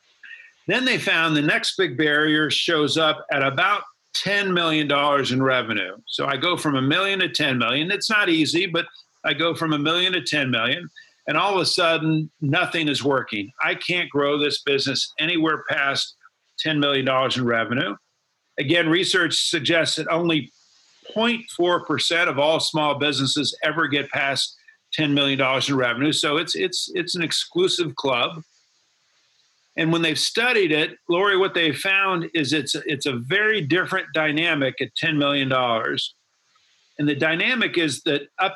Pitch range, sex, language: 140-170 Hz, male, English